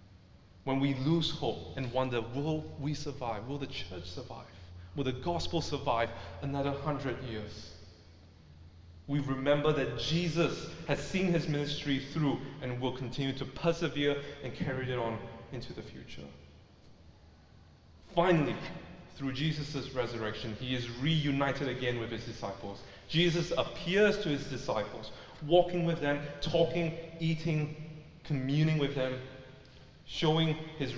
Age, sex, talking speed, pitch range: 30-49, male, 130 wpm, 115-155 Hz